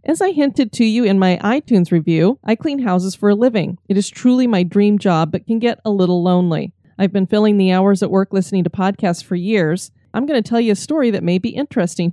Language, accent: English, American